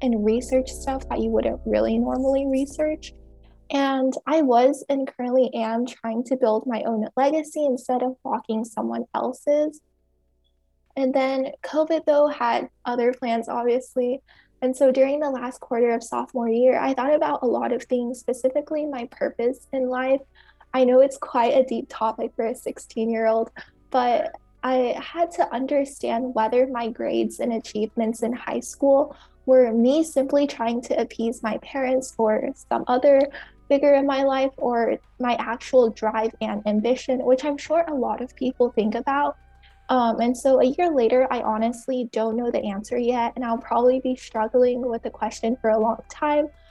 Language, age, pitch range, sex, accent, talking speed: English, 10-29, 230-275 Hz, female, American, 170 wpm